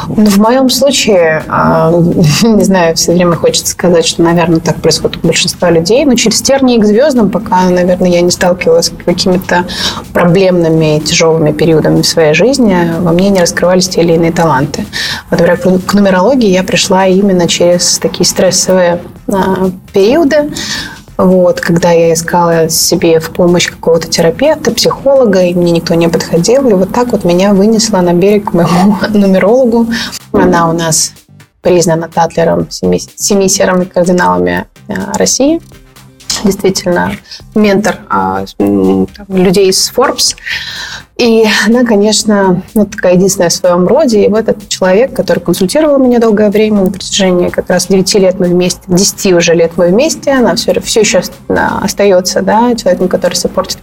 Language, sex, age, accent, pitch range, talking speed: Russian, female, 20-39, native, 175-215 Hz, 150 wpm